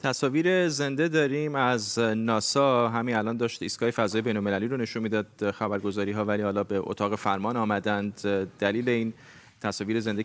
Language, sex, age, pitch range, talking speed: Persian, male, 30-49, 100-125 Hz, 150 wpm